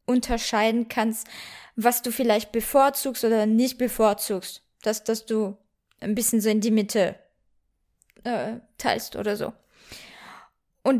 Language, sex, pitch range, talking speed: German, female, 225-275 Hz, 120 wpm